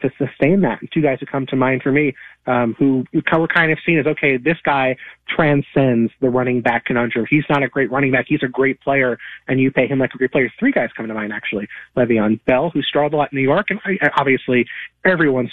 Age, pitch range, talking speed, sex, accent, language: 30-49, 125-150 Hz, 245 wpm, male, American, English